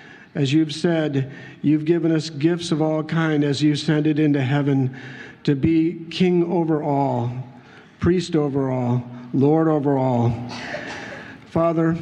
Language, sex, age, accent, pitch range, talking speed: English, male, 50-69, American, 135-160 Hz, 140 wpm